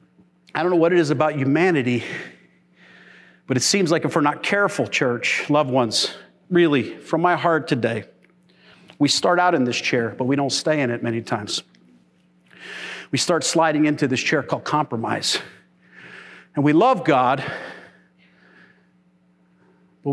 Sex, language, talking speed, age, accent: male, English, 150 wpm, 40-59, American